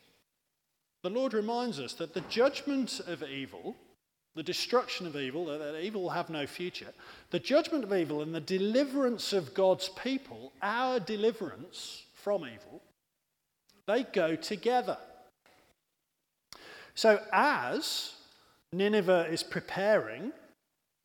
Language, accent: English, British